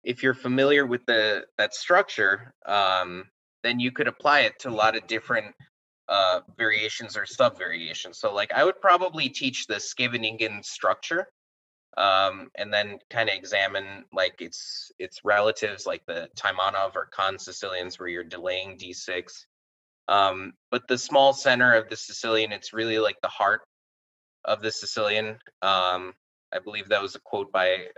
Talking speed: 160 wpm